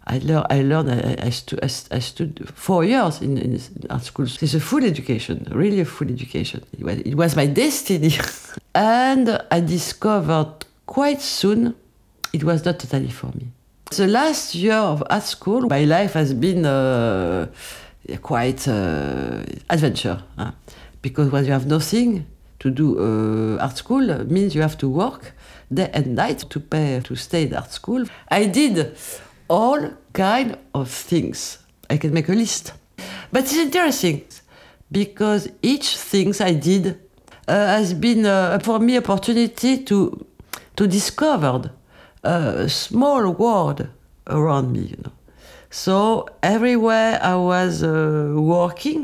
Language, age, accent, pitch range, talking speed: English, 60-79, French, 140-220 Hz, 150 wpm